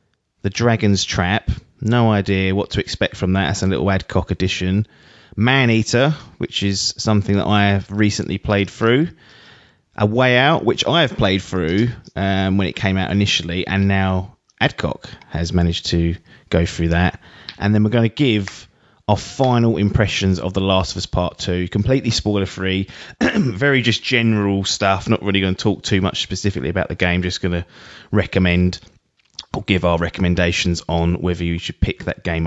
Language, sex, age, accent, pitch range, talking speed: English, male, 30-49, British, 90-110 Hz, 180 wpm